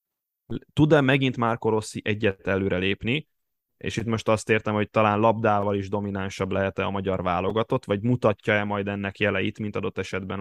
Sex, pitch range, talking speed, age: male, 95-110 Hz, 160 wpm, 10-29